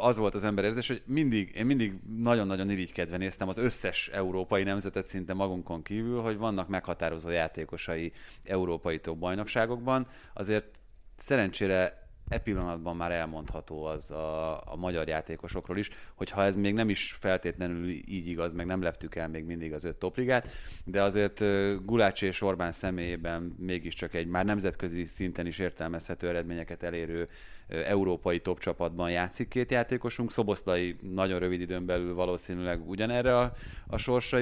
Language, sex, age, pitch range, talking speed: Hungarian, male, 30-49, 85-100 Hz, 150 wpm